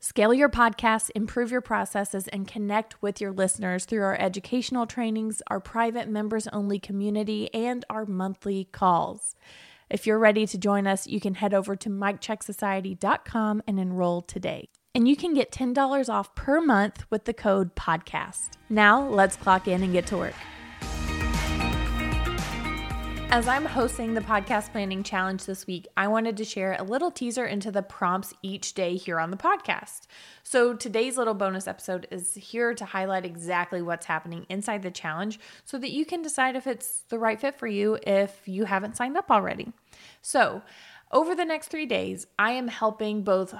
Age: 20-39